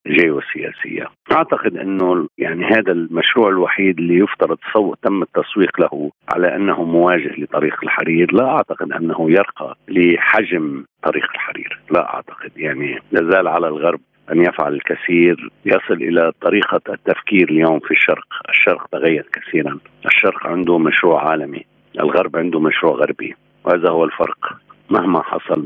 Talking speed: 135 wpm